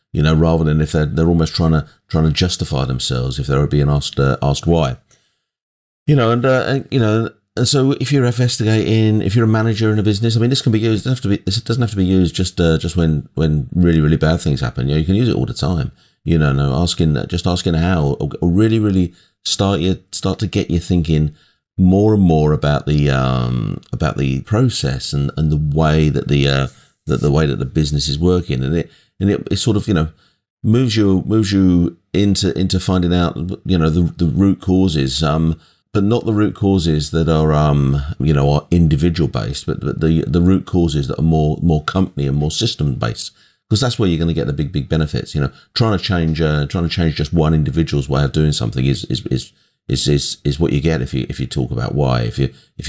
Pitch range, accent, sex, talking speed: 75-100 Hz, British, male, 245 wpm